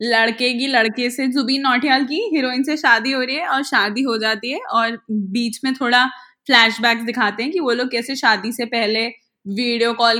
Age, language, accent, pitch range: 10-29, Hindi, native, 235-300 Hz